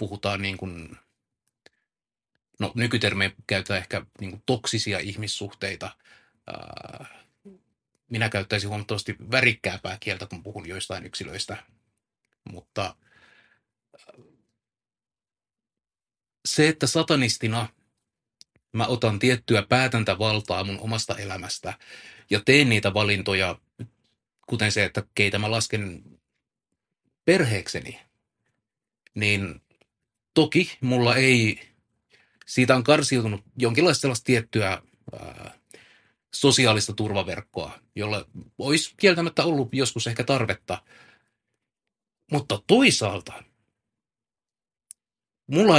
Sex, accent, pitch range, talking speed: male, native, 100-125 Hz, 80 wpm